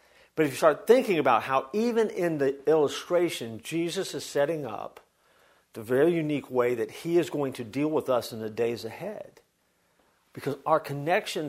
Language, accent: English, American